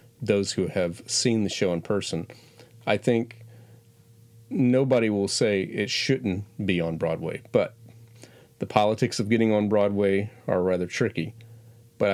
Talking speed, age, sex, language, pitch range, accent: 145 wpm, 40-59, male, English, 105-125 Hz, American